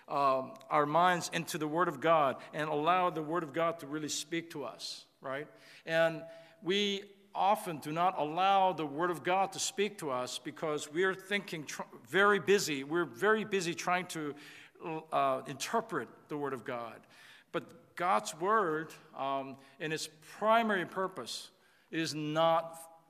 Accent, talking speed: American, 160 wpm